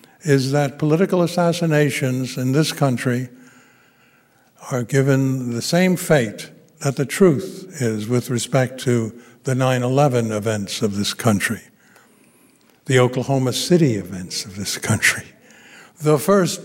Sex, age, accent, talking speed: male, 60-79, American, 125 wpm